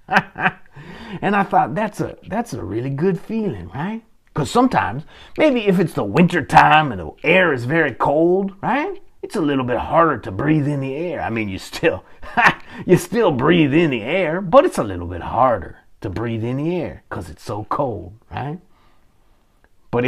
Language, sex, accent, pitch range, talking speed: English, male, American, 120-190 Hz, 190 wpm